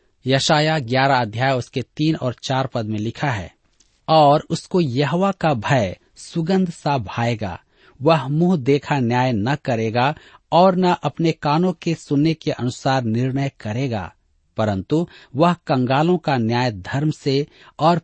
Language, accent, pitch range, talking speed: Hindi, native, 110-155 Hz, 145 wpm